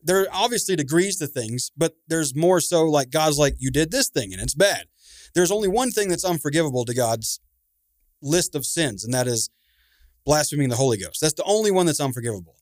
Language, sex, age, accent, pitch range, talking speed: English, male, 30-49, American, 125-165 Hz, 210 wpm